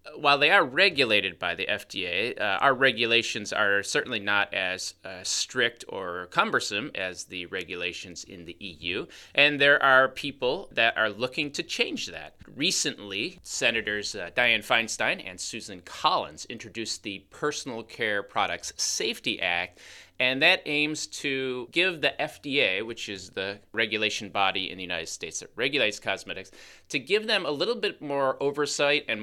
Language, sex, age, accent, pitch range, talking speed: English, male, 30-49, American, 100-140 Hz, 160 wpm